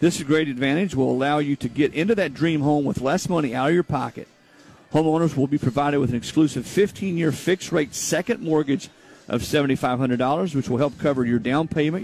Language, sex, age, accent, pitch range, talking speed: English, male, 50-69, American, 130-160 Hz, 210 wpm